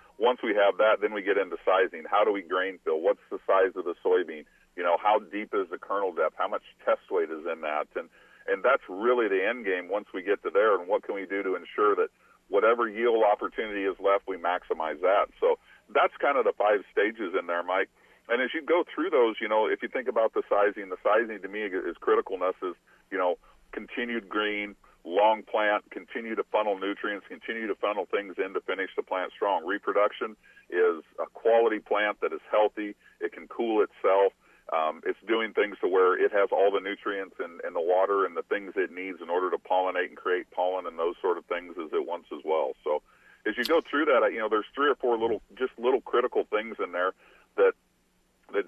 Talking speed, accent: 225 wpm, American